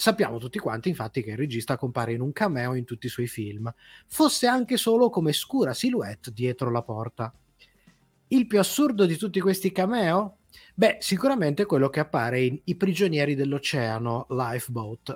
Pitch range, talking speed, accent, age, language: 125-200 Hz, 165 wpm, native, 30-49, Italian